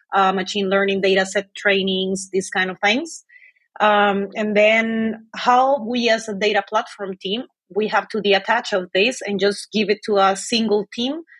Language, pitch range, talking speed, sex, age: English, 195-225 Hz, 180 wpm, female, 30-49